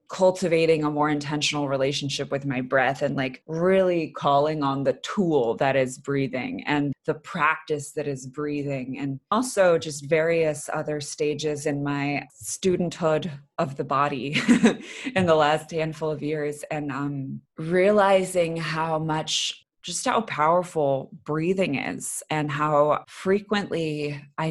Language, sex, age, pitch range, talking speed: English, female, 20-39, 145-165 Hz, 135 wpm